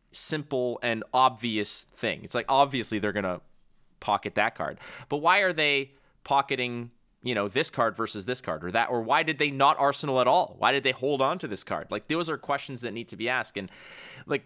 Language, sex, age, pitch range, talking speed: English, male, 30-49, 115-145 Hz, 220 wpm